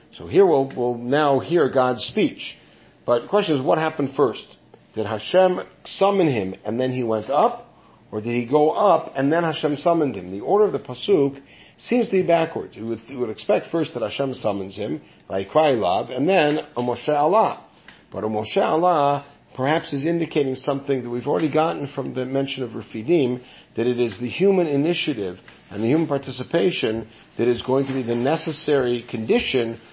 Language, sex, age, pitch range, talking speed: English, male, 50-69, 120-150 Hz, 175 wpm